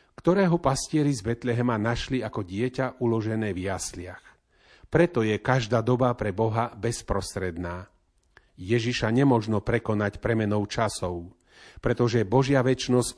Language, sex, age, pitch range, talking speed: Slovak, male, 40-59, 105-130 Hz, 115 wpm